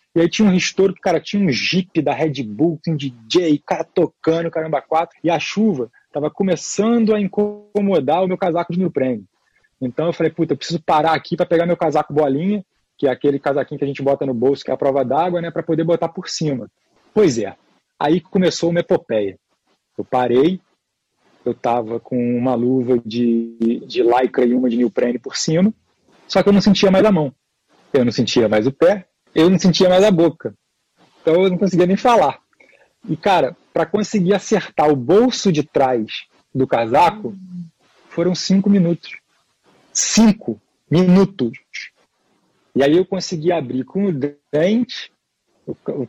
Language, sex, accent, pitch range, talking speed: Portuguese, male, Brazilian, 140-195 Hz, 185 wpm